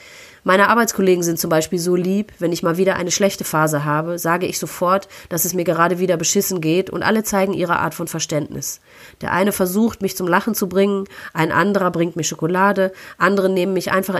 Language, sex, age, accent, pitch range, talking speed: German, female, 30-49, German, 160-190 Hz, 205 wpm